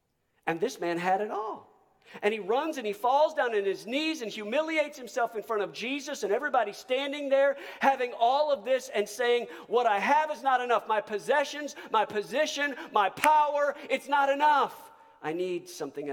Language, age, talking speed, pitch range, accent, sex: English, 50-69, 190 wpm, 155-260 Hz, American, male